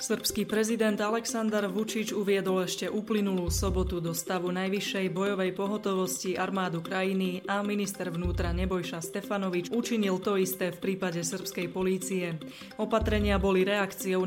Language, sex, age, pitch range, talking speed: Slovak, female, 20-39, 180-200 Hz, 125 wpm